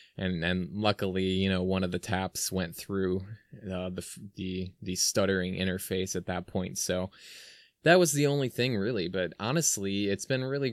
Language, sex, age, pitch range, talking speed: English, male, 20-39, 95-110 Hz, 180 wpm